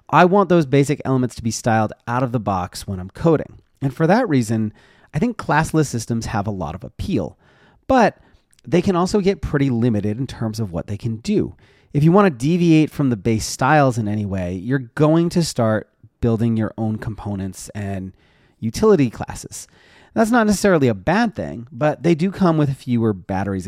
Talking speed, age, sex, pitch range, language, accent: 200 wpm, 30-49, male, 110-145 Hz, English, American